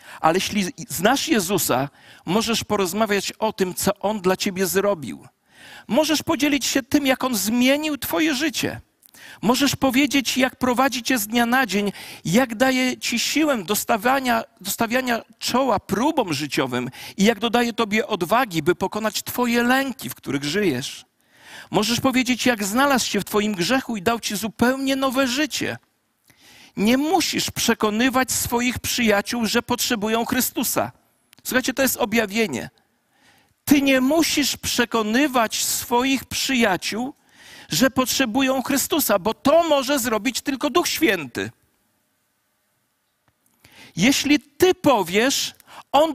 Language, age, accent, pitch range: Polish, 50-69, native, 220-275 Hz